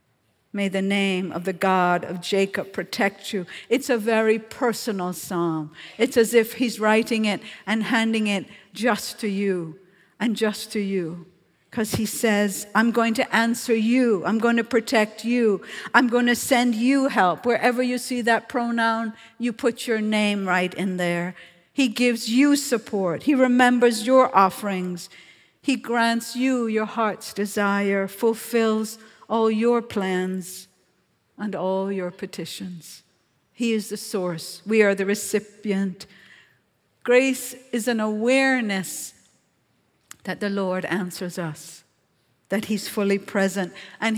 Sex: female